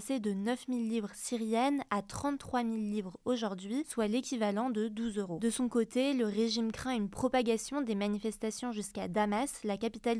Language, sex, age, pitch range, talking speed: French, female, 20-39, 210-250 Hz, 165 wpm